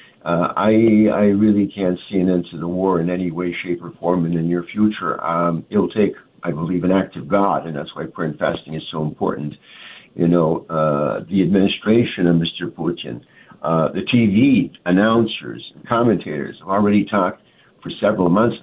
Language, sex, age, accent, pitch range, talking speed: English, male, 60-79, American, 85-100 Hz, 185 wpm